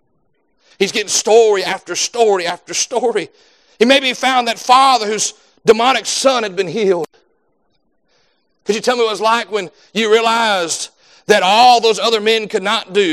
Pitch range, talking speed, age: 175-235 Hz, 170 wpm, 40-59